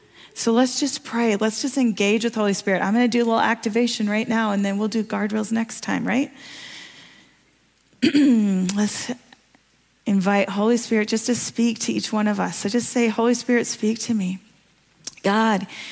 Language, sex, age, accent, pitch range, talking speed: English, female, 40-59, American, 205-235 Hz, 175 wpm